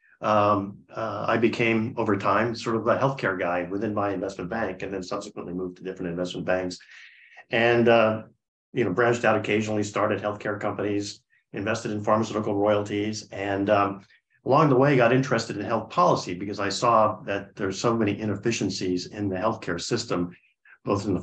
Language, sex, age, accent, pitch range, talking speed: English, male, 50-69, American, 100-120 Hz, 175 wpm